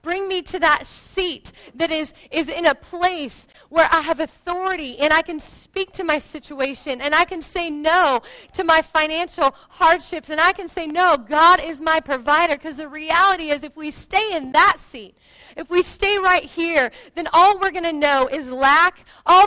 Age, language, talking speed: 30-49, English, 195 wpm